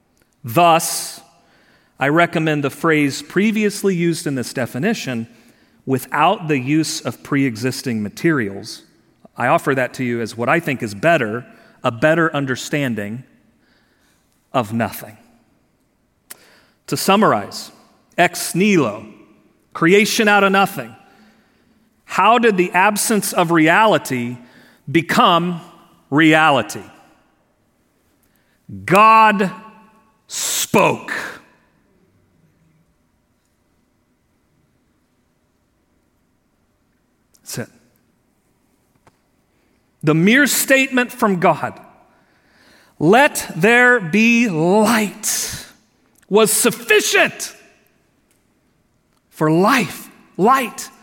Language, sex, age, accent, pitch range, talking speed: English, male, 40-59, American, 140-220 Hz, 80 wpm